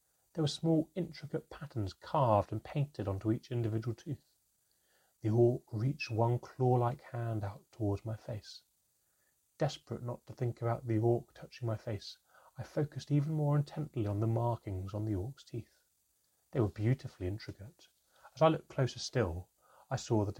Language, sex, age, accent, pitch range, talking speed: English, male, 30-49, British, 105-150 Hz, 165 wpm